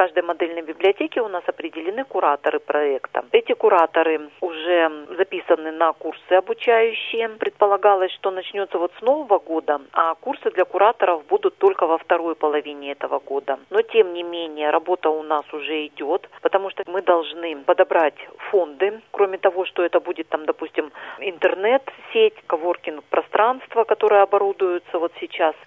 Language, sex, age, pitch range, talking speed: Russian, female, 40-59, 160-230 Hz, 150 wpm